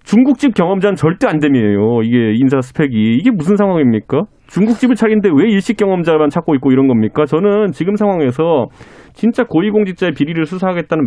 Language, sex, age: Korean, male, 30-49